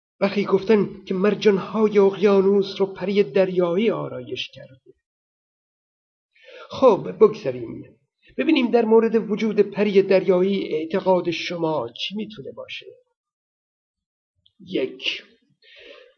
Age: 50-69